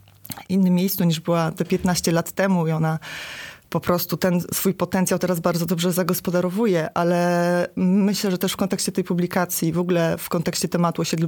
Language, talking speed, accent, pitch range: Polish, 175 wpm, native, 175-195 Hz